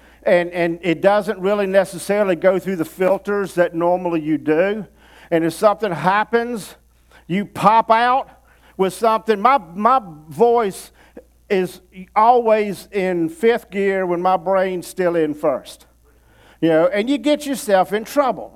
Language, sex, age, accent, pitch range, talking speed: English, male, 50-69, American, 175-230 Hz, 145 wpm